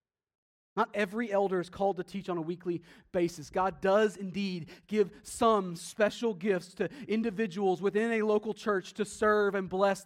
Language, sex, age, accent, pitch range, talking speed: English, male, 30-49, American, 165-210 Hz, 165 wpm